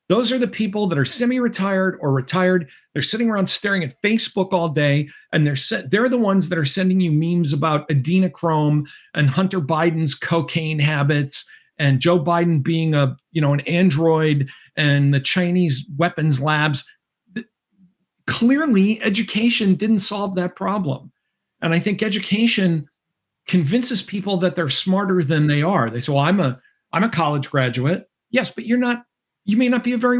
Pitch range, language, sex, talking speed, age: 150-210 Hz, English, male, 170 wpm, 50-69